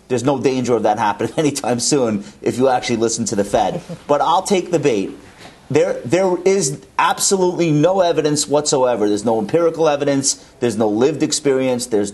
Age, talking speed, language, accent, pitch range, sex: 30-49, 180 wpm, English, American, 115-160 Hz, male